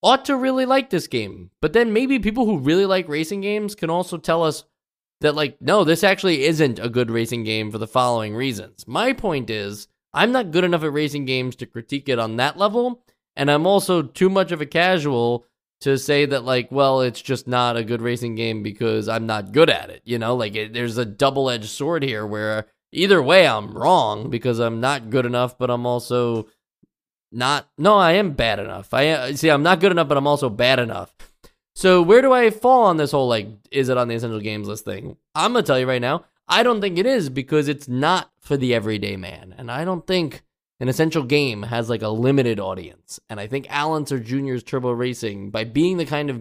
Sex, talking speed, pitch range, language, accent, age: male, 225 wpm, 120-165 Hz, English, American, 20-39